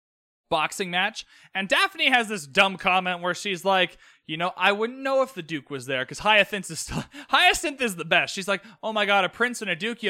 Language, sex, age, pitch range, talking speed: English, male, 20-39, 175-230 Hz, 240 wpm